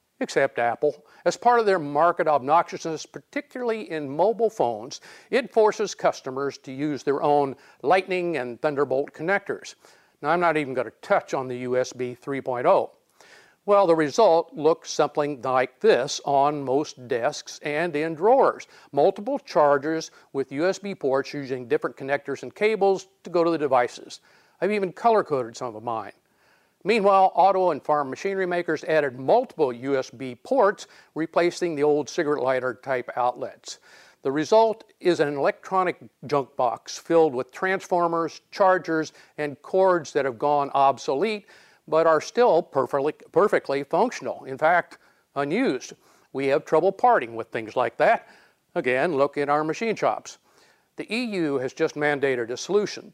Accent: American